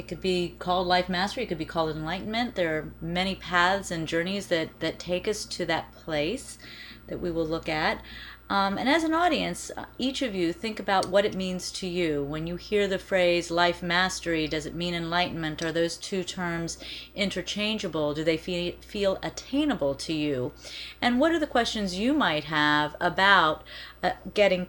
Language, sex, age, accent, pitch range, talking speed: English, female, 30-49, American, 160-195 Hz, 190 wpm